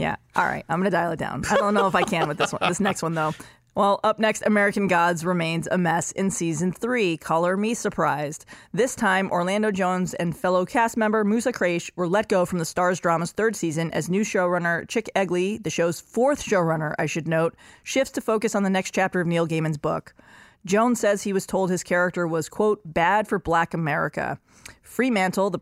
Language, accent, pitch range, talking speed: English, American, 165-210 Hz, 220 wpm